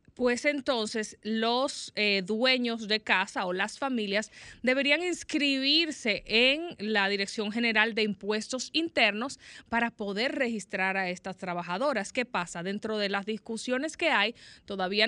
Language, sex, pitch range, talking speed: Spanish, female, 205-260 Hz, 135 wpm